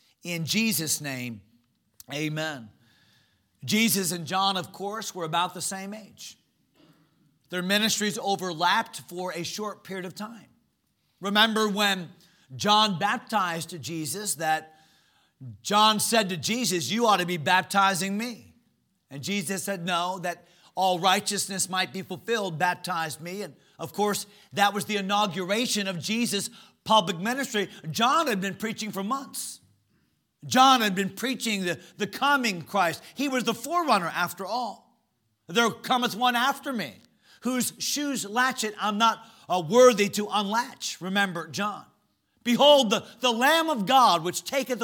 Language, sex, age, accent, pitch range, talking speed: English, male, 40-59, American, 180-230 Hz, 140 wpm